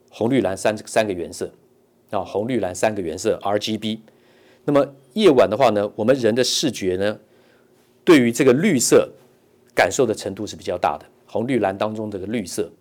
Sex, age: male, 50-69